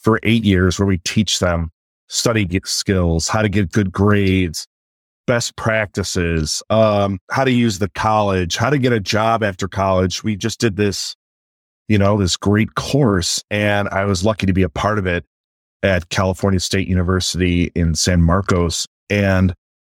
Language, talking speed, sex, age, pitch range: English, 170 wpm, male, 30-49, 90-110 Hz